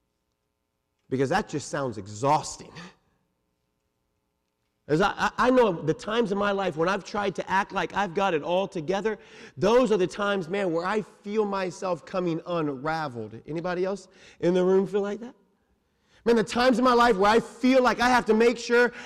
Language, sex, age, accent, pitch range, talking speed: English, male, 40-59, American, 150-255 Hz, 185 wpm